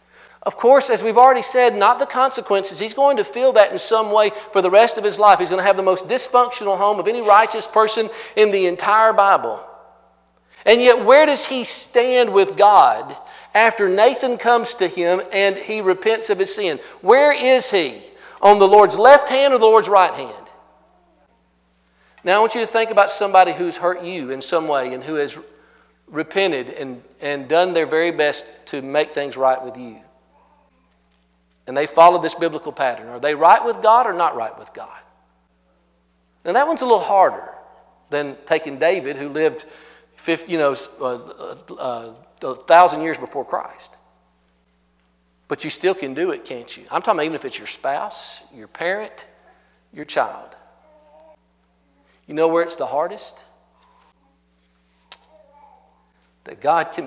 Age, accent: 50-69, American